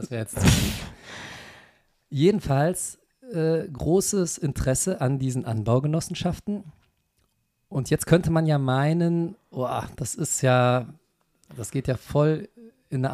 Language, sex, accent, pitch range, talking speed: German, male, German, 120-150 Hz, 115 wpm